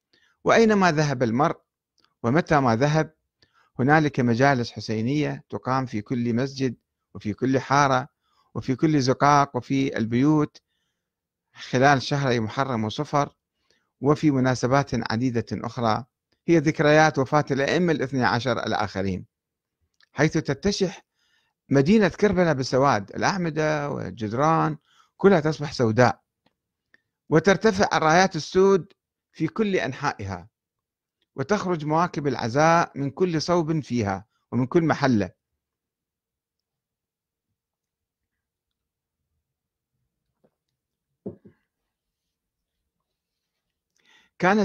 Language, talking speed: Arabic, 85 wpm